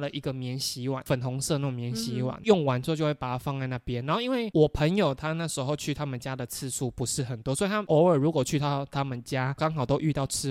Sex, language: male, Chinese